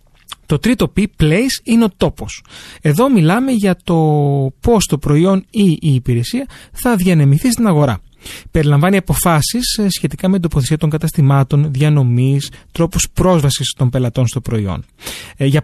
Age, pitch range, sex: 30-49, 130-185 Hz, male